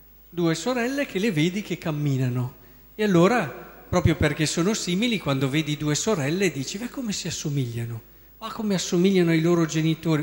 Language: Italian